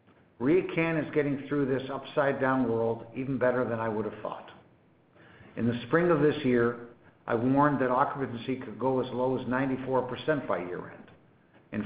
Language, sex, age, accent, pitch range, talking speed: English, male, 60-79, American, 115-140 Hz, 175 wpm